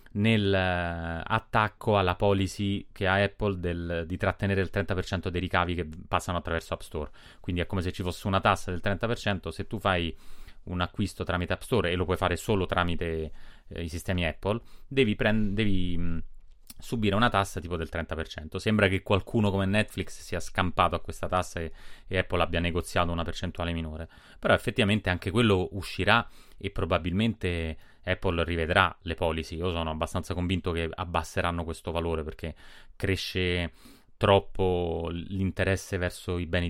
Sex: male